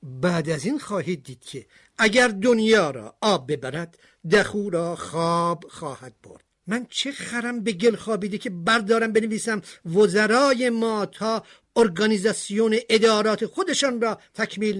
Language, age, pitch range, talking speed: Persian, 50-69, 180-235 Hz, 135 wpm